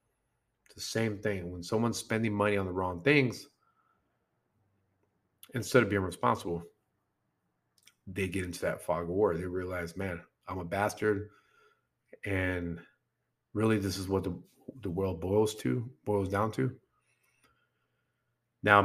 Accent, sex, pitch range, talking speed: American, male, 90-120 Hz, 135 wpm